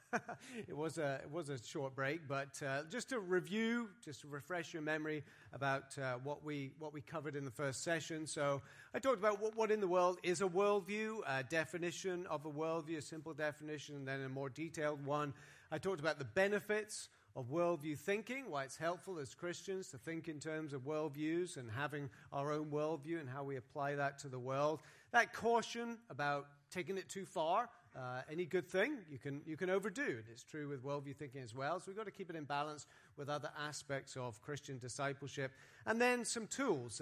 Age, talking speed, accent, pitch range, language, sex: 40-59, 210 wpm, British, 140-180 Hz, English, male